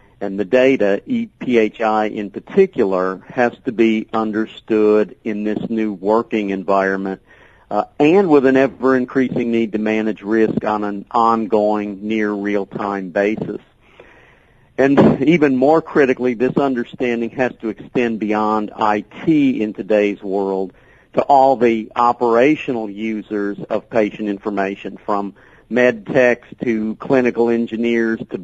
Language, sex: English, male